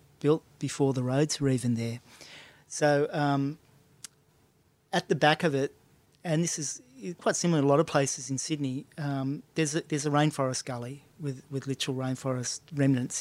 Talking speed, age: 170 wpm, 30-49